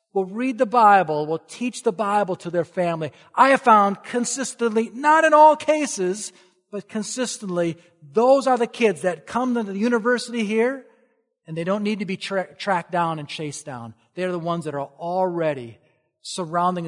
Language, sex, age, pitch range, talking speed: English, male, 40-59, 165-250 Hz, 175 wpm